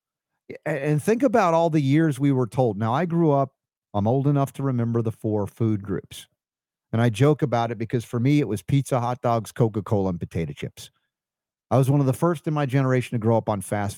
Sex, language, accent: male, English, American